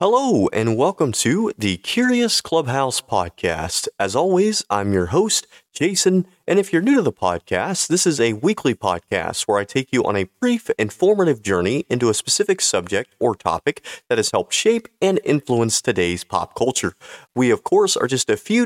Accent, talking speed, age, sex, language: American, 185 wpm, 30-49, male, English